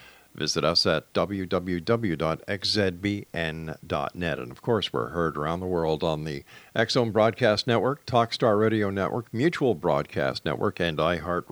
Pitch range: 90-120 Hz